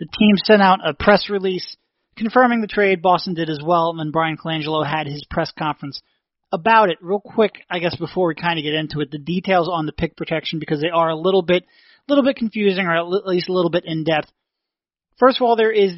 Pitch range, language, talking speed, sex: 160-205 Hz, English, 235 wpm, male